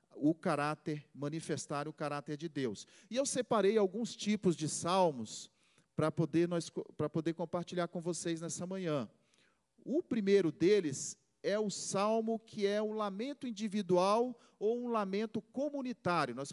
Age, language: 40-59, Portuguese